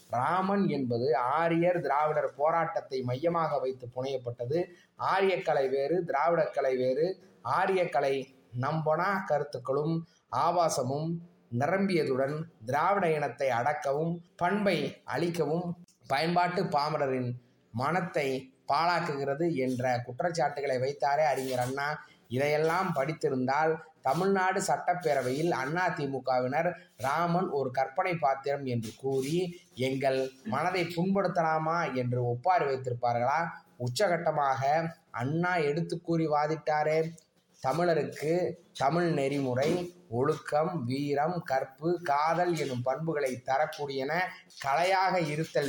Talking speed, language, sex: 85 wpm, Tamil, male